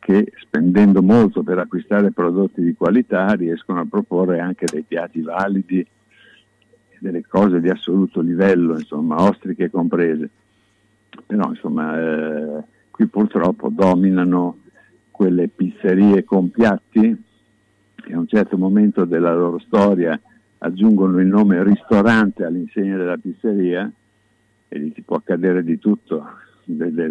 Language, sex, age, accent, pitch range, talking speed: Italian, male, 60-79, native, 90-105 Hz, 125 wpm